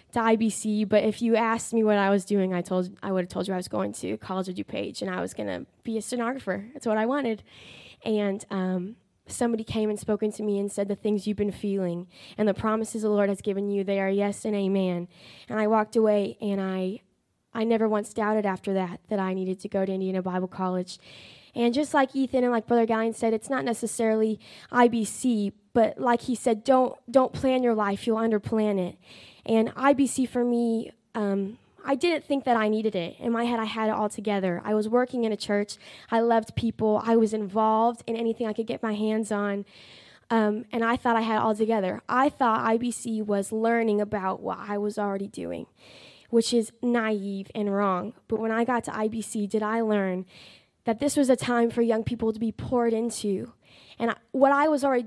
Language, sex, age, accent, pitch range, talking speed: English, female, 10-29, American, 205-235 Hz, 220 wpm